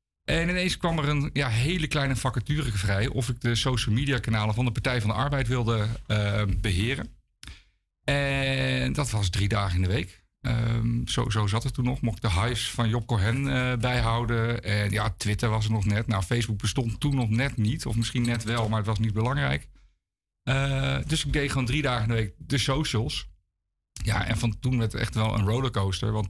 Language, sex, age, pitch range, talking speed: Dutch, male, 50-69, 105-125 Hz, 215 wpm